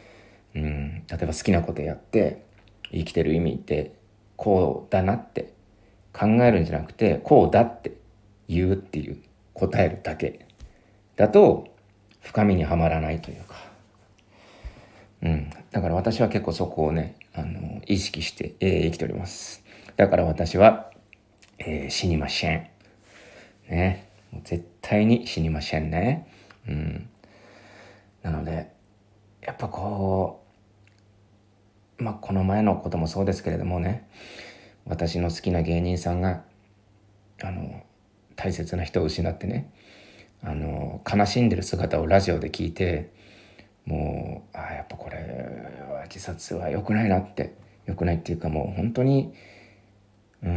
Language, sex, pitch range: Japanese, male, 85-105 Hz